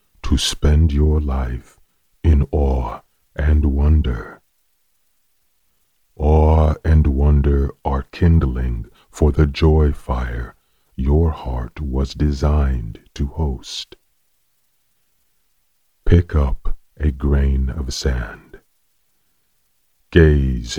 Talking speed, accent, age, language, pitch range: 85 wpm, American, 40-59, English, 65-80 Hz